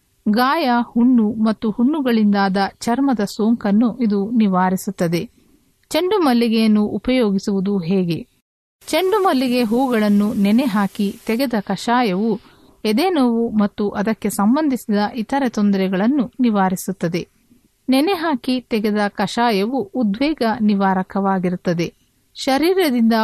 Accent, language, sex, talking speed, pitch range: native, Kannada, female, 75 wpm, 195-245 Hz